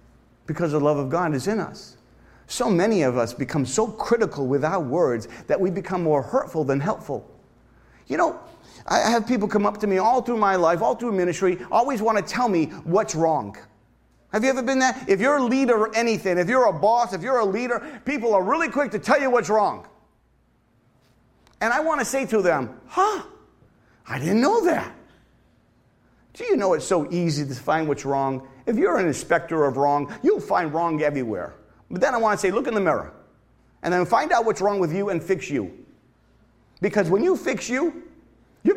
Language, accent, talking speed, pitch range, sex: English, American, 210 wpm, 150-240 Hz, male